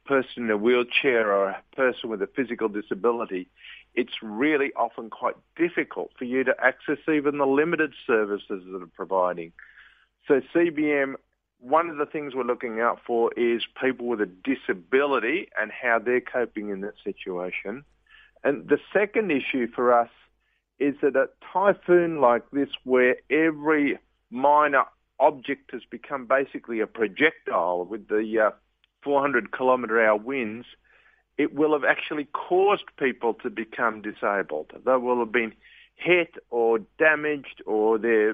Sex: male